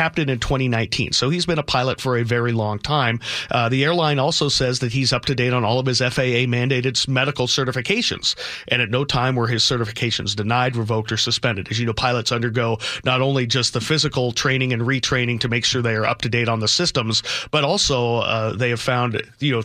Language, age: English, 40-59